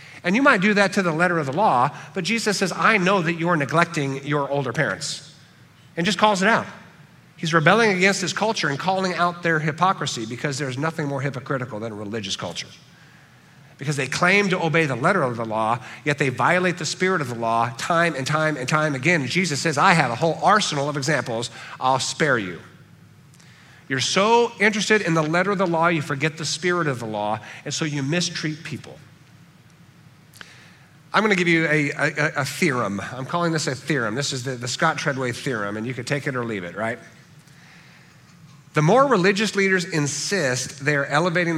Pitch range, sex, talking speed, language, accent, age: 140-175 Hz, male, 200 wpm, English, American, 50-69